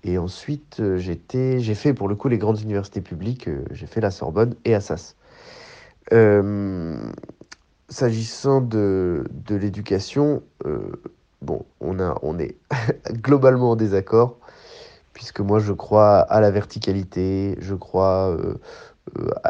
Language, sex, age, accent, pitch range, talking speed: French, male, 20-39, French, 100-120 Hz, 130 wpm